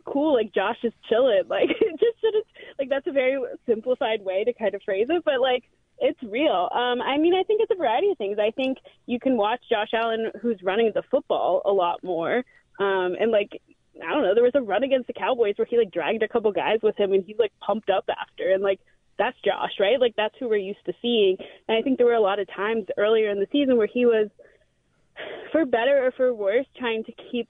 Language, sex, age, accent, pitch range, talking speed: English, female, 20-39, American, 215-290 Hz, 240 wpm